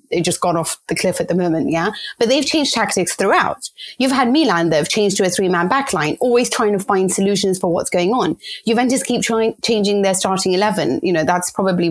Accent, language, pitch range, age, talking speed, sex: British, English, 200-295 Hz, 30-49, 225 wpm, female